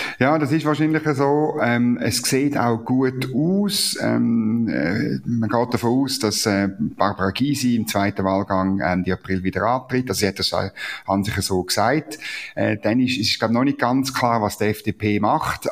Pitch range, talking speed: 105-140 Hz, 160 wpm